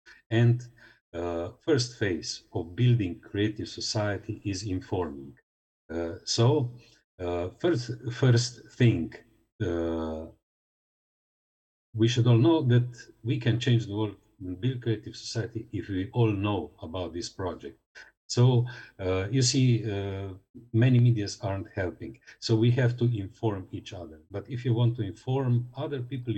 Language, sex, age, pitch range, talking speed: English, male, 50-69, 95-120 Hz, 145 wpm